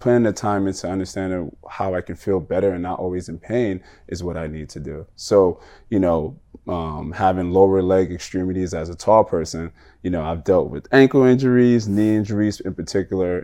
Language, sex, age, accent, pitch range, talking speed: English, male, 20-39, American, 85-95 Hz, 195 wpm